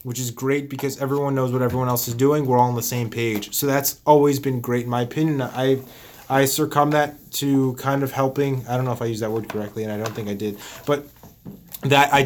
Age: 20-39